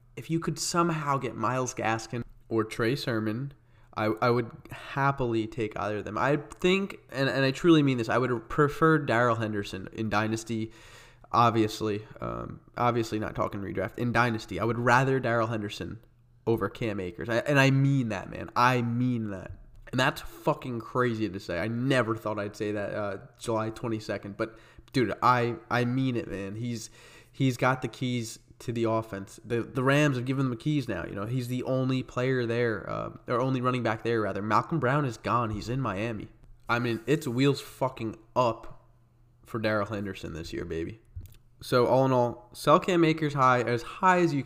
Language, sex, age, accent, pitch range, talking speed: English, male, 20-39, American, 110-130 Hz, 190 wpm